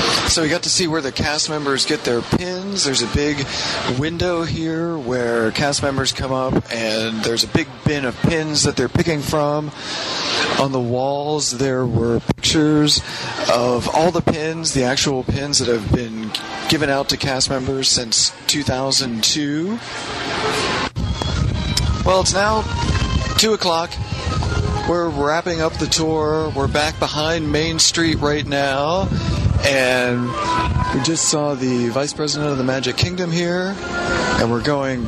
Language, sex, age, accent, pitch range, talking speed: English, male, 40-59, American, 130-165 Hz, 150 wpm